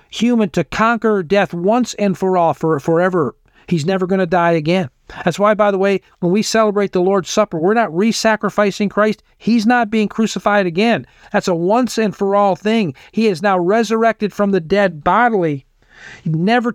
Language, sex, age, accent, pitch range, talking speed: English, male, 50-69, American, 170-220 Hz, 185 wpm